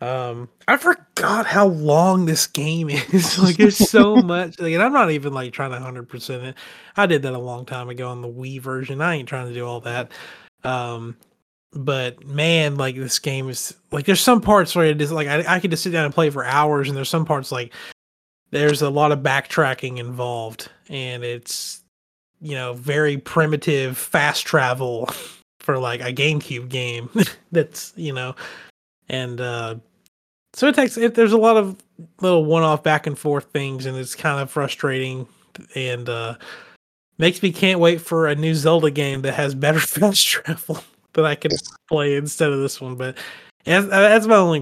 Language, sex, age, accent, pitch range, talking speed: English, male, 30-49, American, 125-160 Hz, 195 wpm